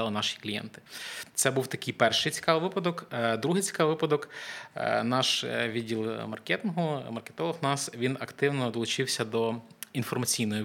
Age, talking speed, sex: 20-39, 125 wpm, male